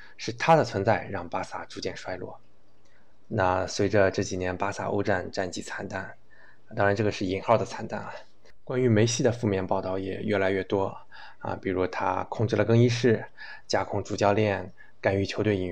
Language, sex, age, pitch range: Chinese, male, 20-39, 95-115 Hz